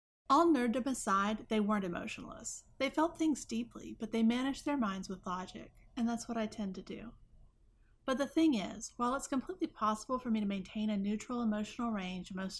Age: 30-49